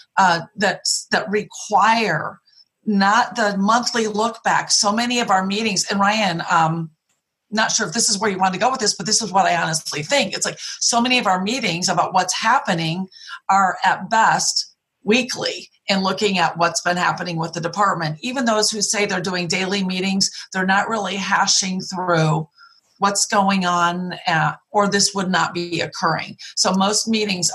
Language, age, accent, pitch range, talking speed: English, 40-59, American, 175-215 Hz, 185 wpm